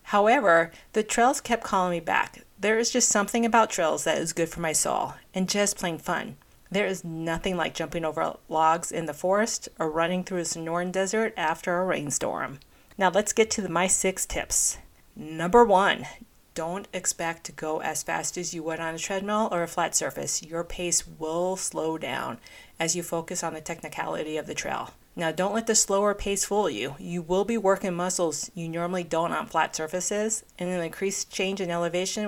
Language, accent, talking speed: English, American, 195 wpm